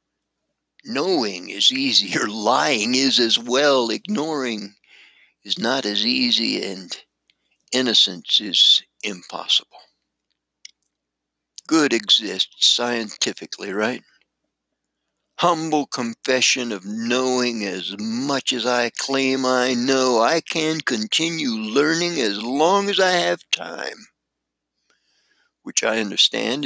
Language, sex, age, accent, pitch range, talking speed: English, male, 60-79, American, 115-185 Hz, 100 wpm